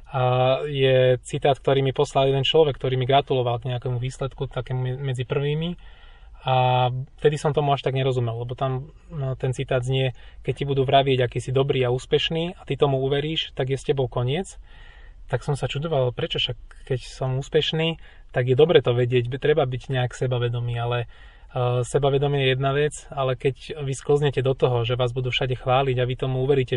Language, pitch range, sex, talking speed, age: Slovak, 125-135 Hz, male, 195 wpm, 20-39